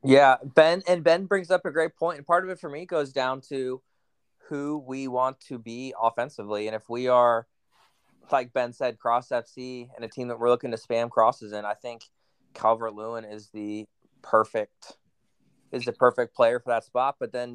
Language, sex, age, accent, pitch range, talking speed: English, male, 20-39, American, 110-125 Hz, 200 wpm